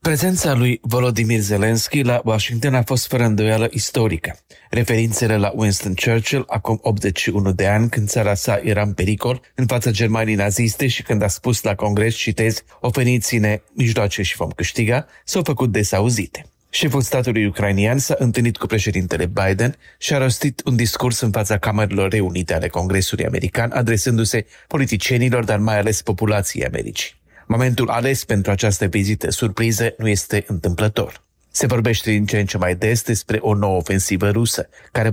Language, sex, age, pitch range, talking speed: Romanian, male, 40-59, 100-120 Hz, 165 wpm